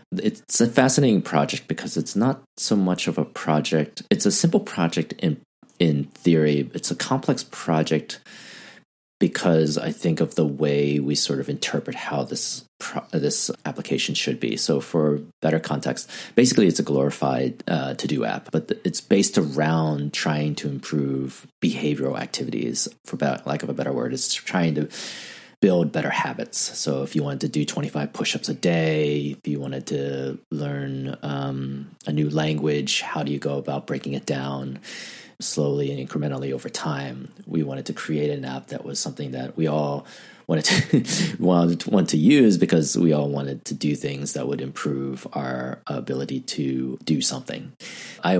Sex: male